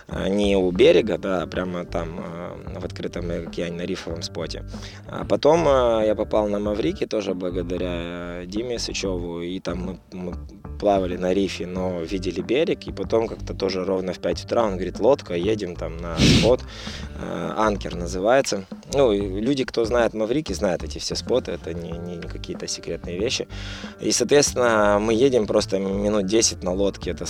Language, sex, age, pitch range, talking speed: Russian, male, 20-39, 85-100 Hz, 160 wpm